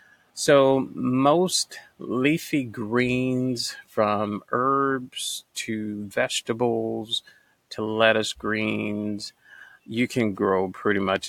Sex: male